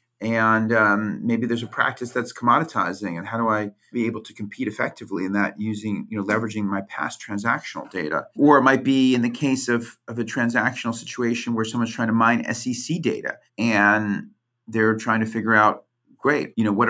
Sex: male